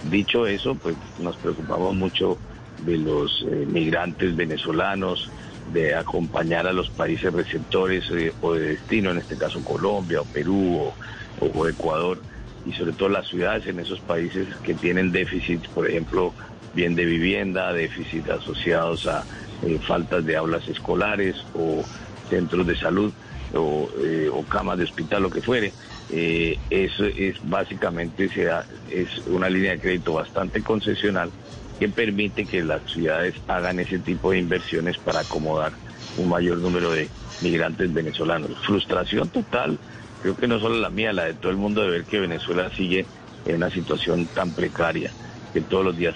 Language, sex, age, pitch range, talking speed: Spanish, male, 50-69, 85-95 Hz, 160 wpm